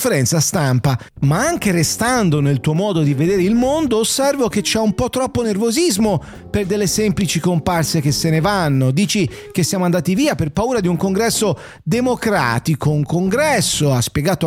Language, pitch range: English, 160-220 Hz